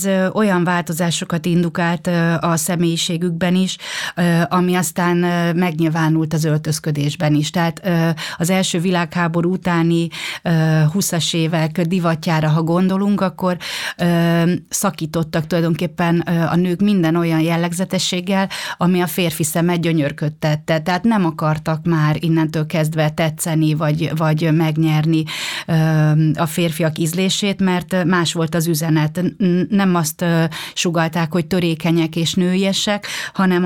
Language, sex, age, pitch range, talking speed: Hungarian, female, 30-49, 160-180 Hz, 110 wpm